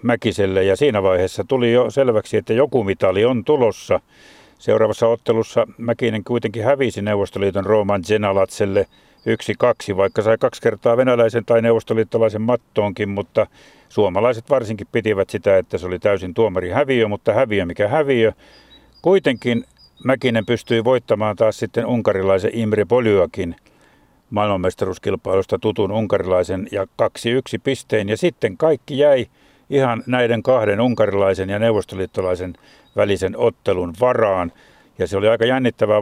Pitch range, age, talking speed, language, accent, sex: 100-120 Hz, 50-69, 130 wpm, Finnish, native, male